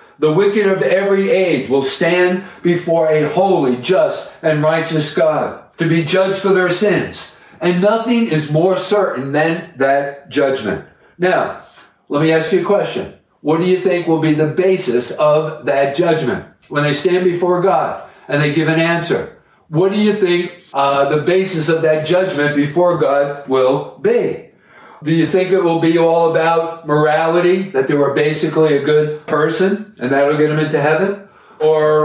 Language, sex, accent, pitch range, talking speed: English, male, American, 150-185 Hz, 175 wpm